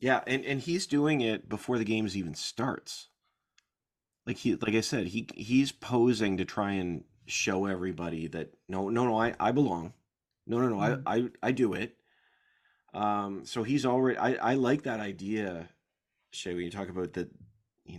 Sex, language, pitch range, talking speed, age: male, English, 100-130 Hz, 185 wpm, 30-49